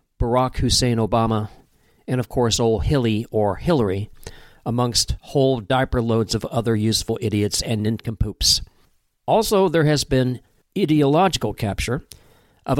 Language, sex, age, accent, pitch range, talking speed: English, male, 50-69, American, 105-130 Hz, 125 wpm